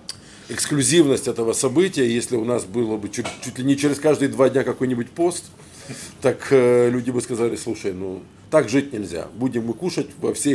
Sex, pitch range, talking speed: male, 115-150 Hz, 190 wpm